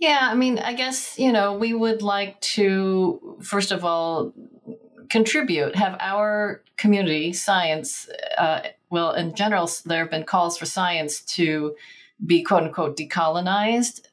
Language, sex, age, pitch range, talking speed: English, female, 40-59, 150-190 Hz, 145 wpm